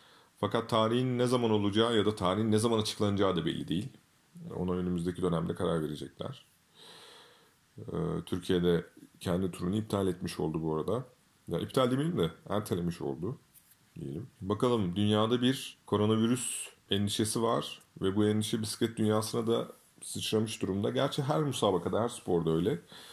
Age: 30-49